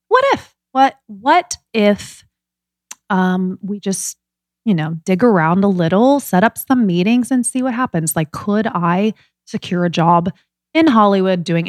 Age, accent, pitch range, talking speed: 20-39, American, 175-245 Hz, 160 wpm